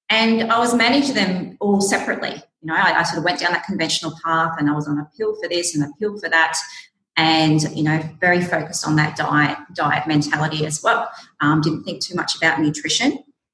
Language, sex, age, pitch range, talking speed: English, female, 30-49, 150-185 Hz, 220 wpm